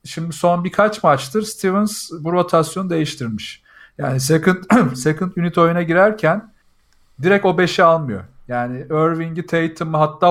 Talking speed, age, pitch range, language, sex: 130 wpm, 40-59, 130-165 Hz, Turkish, male